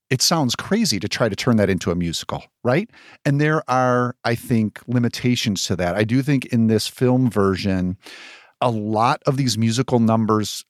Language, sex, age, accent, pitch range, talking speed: English, male, 50-69, American, 110-140 Hz, 185 wpm